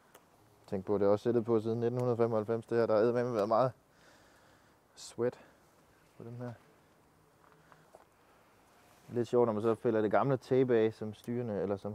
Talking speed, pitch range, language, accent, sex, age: 140 wpm, 115-145 Hz, Danish, native, male, 20-39